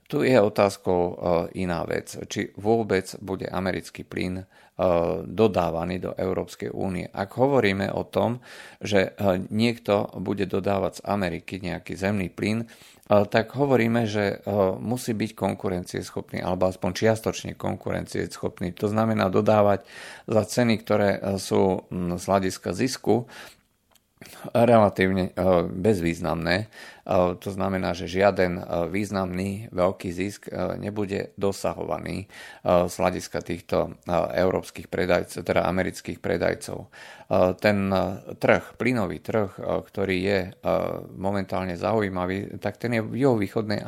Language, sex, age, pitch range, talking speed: Slovak, male, 40-59, 90-105 Hz, 110 wpm